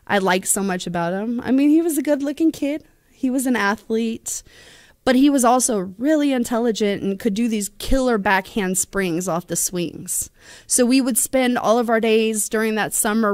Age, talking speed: 20-39, 200 wpm